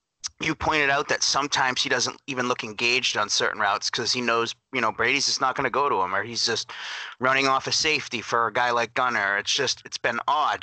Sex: male